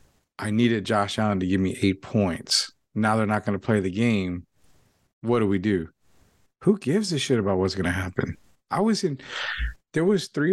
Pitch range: 105-130 Hz